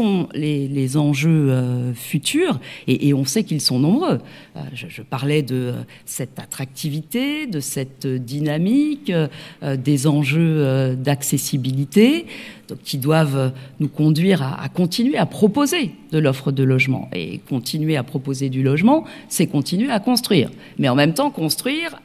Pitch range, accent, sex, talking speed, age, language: 140-180 Hz, French, female, 145 wpm, 40-59, French